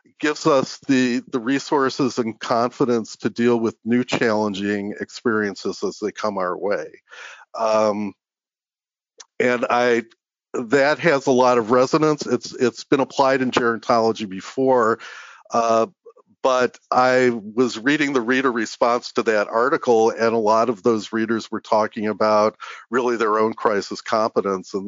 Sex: male